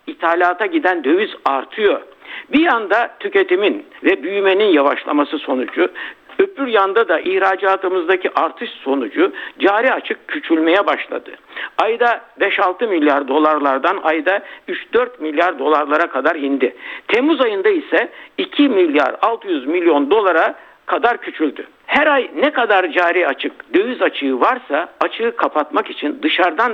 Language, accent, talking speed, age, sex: Turkish, native, 120 wpm, 60-79, male